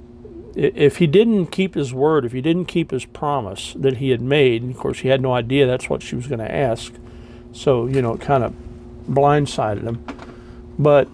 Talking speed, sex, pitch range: 210 wpm, male, 125-155 Hz